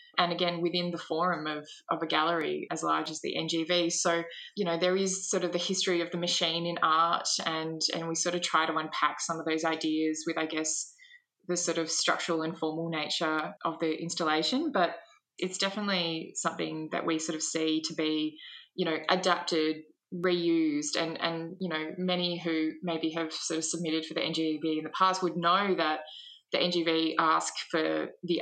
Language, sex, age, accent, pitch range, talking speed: English, female, 20-39, Australian, 160-180 Hz, 195 wpm